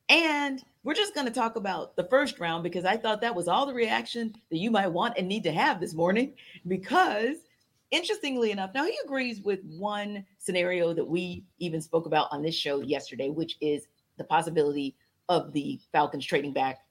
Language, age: English, 40-59